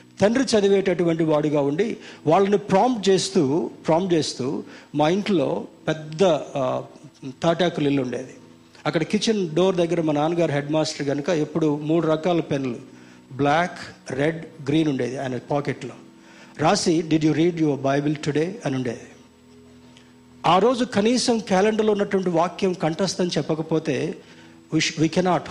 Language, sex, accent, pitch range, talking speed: Telugu, male, native, 140-190 Hz, 120 wpm